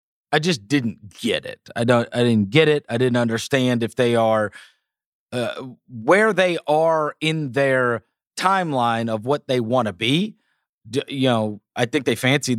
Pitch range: 115-150 Hz